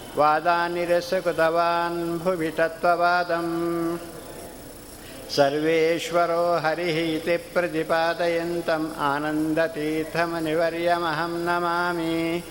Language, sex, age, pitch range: Kannada, male, 60-79, 160-170 Hz